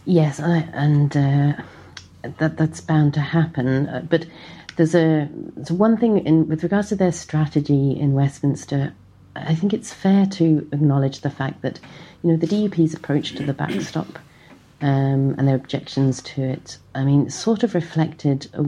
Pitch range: 125-150 Hz